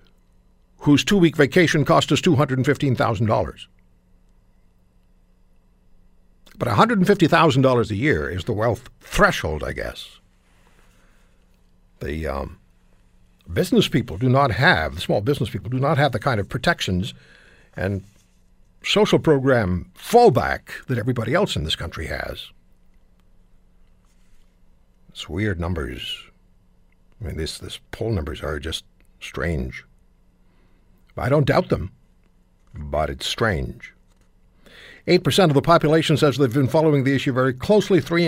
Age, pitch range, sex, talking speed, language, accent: 60-79, 100-160 Hz, male, 120 wpm, English, American